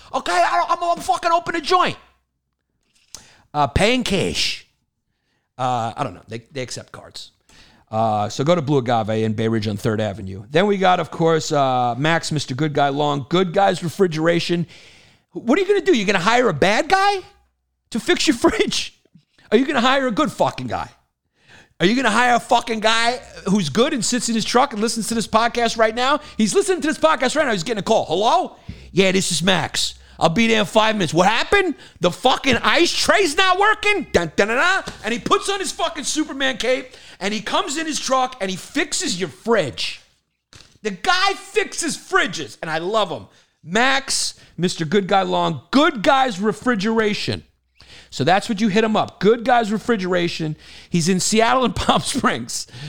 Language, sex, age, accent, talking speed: English, male, 50-69, American, 205 wpm